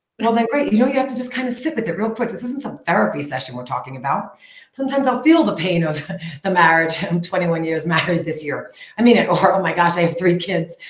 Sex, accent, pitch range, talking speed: female, American, 170-260 Hz, 275 wpm